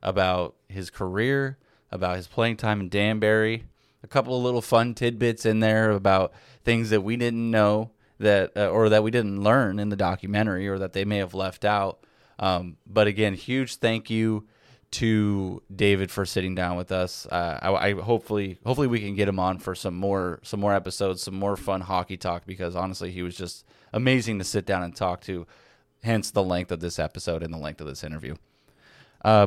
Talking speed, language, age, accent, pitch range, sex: 200 wpm, English, 20-39, American, 95-115 Hz, male